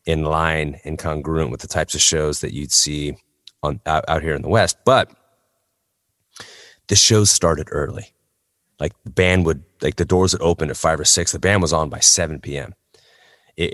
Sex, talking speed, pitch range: male, 195 wpm, 80-100 Hz